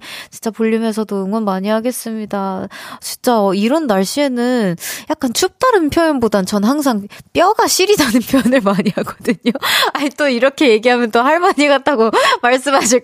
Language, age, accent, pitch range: Korean, 20-39, native, 210-300 Hz